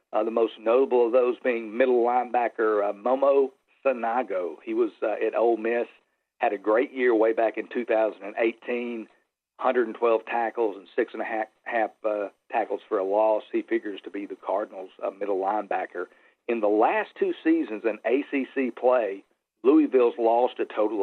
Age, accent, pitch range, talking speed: 50-69, American, 115-150 Hz, 170 wpm